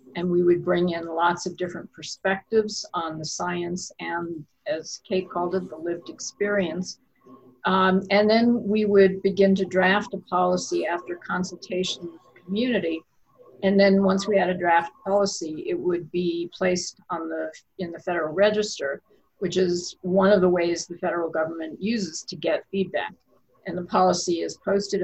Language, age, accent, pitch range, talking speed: English, 50-69, American, 170-195 Hz, 170 wpm